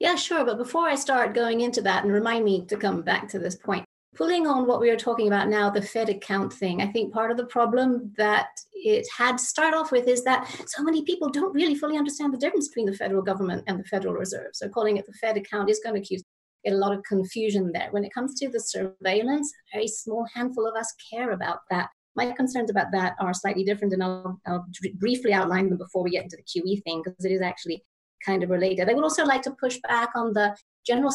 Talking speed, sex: 250 wpm, female